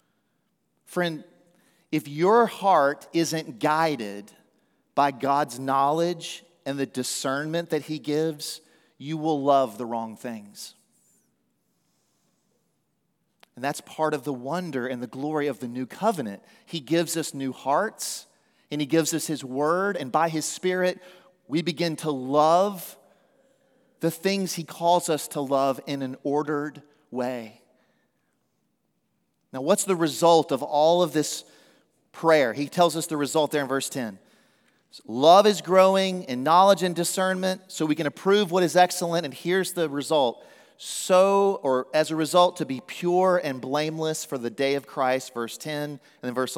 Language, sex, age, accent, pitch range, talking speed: English, male, 40-59, American, 135-175 Hz, 155 wpm